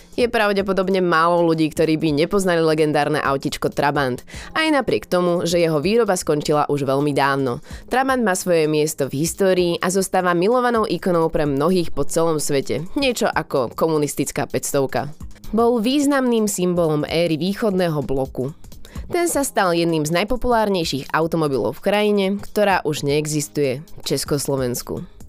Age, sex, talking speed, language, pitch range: 20-39, female, 140 wpm, Slovak, 150-210 Hz